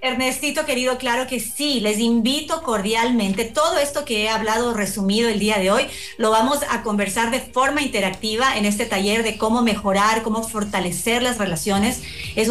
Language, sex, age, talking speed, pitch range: Spanish, female, 40-59, 175 wpm, 210-255 Hz